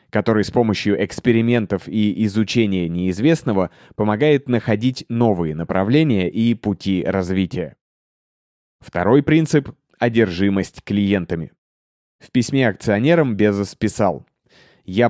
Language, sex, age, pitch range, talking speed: Russian, male, 20-39, 100-120 Hz, 95 wpm